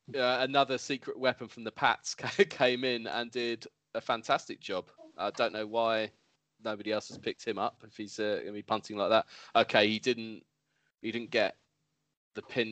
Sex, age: male, 20-39